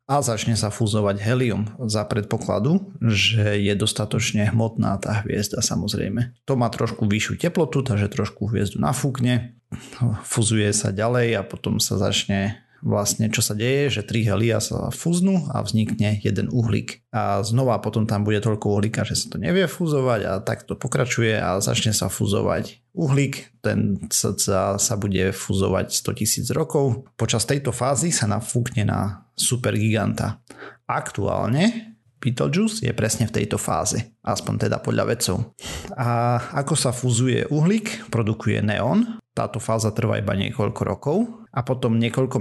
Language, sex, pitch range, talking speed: Slovak, male, 105-130 Hz, 150 wpm